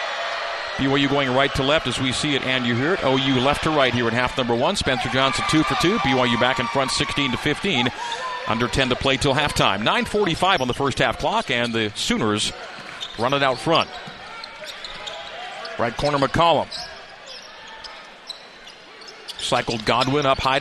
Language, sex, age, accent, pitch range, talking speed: English, male, 40-59, American, 125-145 Hz, 175 wpm